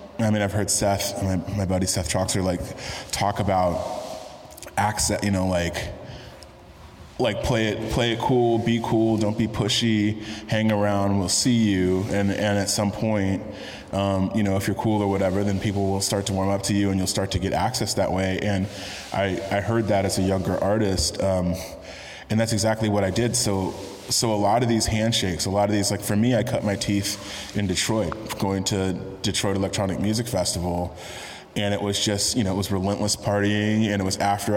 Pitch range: 95-110 Hz